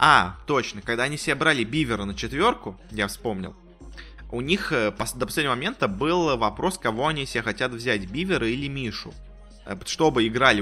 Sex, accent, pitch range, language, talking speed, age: male, native, 105-140 Hz, Russian, 160 wpm, 20-39